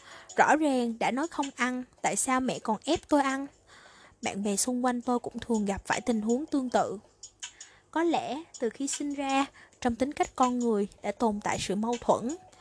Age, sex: 20-39, female